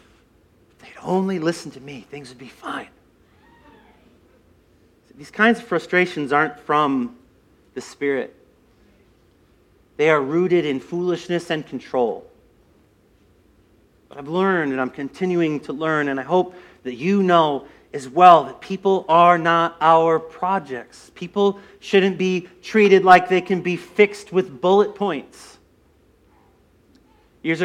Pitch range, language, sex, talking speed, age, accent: 140-190 Hz, English, male, 125 wpm, 40-59, American